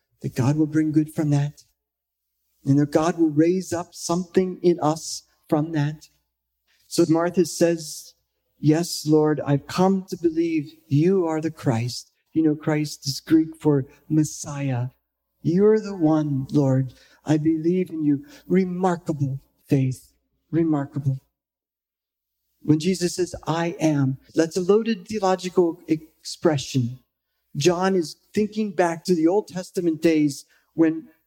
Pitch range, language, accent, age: 140-175 Hz, English, American, 50-69